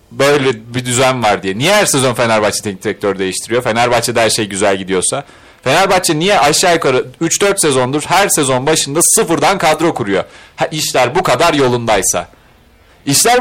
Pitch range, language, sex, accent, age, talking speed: 125-175 Hz, Turkish, male, native, 40-59, 155 wpm